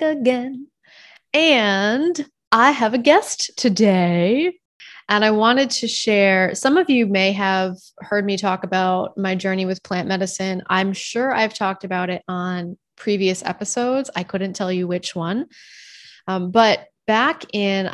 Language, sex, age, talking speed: English, female, 20-39, 150 wpm